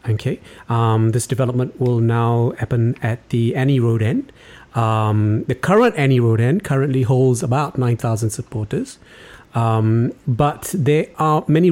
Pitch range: 115-155 Hz